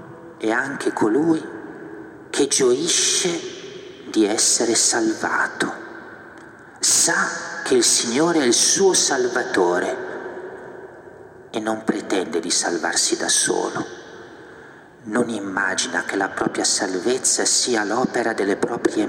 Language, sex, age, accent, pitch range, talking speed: Italian, male, 50-69, native, 340-385 Hz, 105 wpm